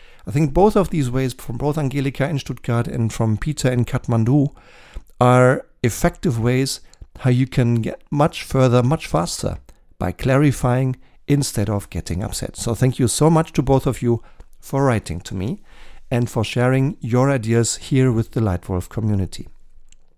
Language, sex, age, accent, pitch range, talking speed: German, male, 50-69, German, 110-140 Hz, 165 wpm